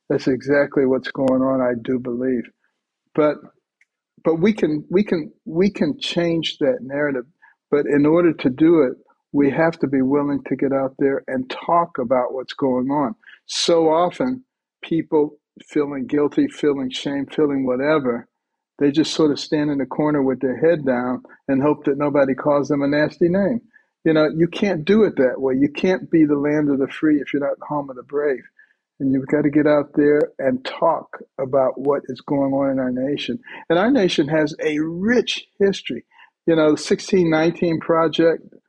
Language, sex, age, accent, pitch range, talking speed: English, male, 60-79, American, 140-170 Hz, 190 wpm